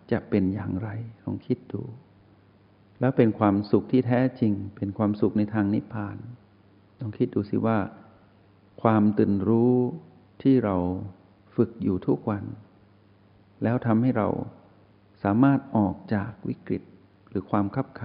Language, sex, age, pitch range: Thai, male, 60-79, 100-115 Hz